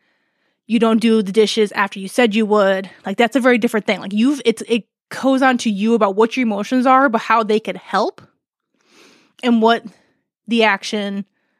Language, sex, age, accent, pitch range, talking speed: English, female, 20-39, American, 210-240 Hz, 195 wpm